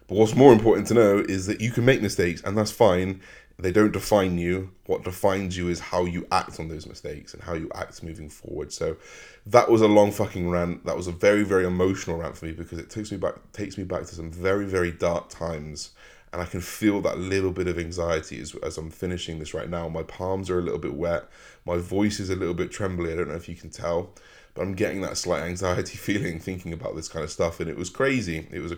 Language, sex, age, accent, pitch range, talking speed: English, male, 20-39, British, 85-95 Hz, 250 wpm